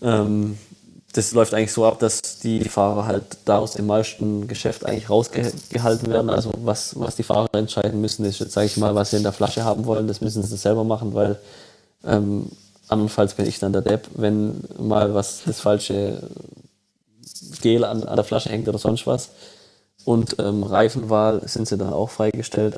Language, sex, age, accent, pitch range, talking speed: German, male, 20-39, German, 105-110 Hz, 185 wpm